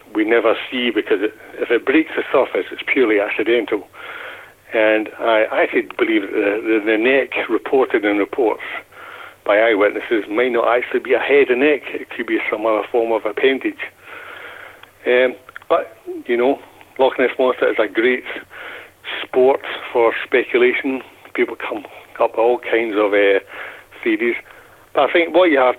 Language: English